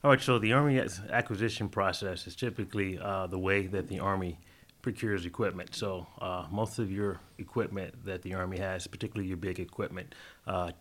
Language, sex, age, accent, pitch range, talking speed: English, male, 30-49, American, 90-105 Hz, 180 wpm